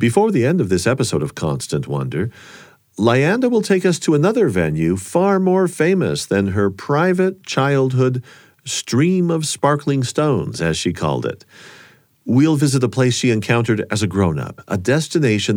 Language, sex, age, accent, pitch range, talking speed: English, male, 50-69, American, 100-145 Hz, 160 wpm